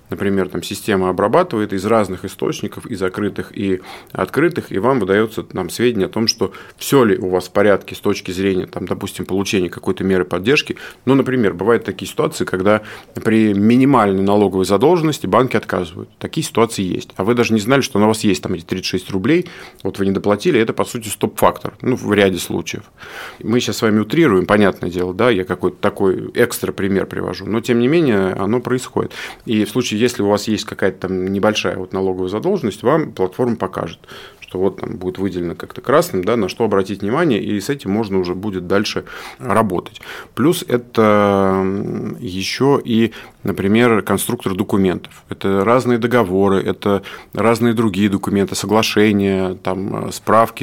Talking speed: 175 wpm